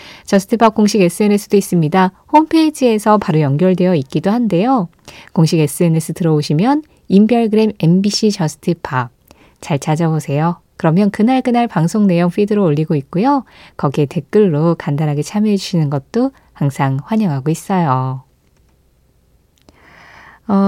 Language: Korean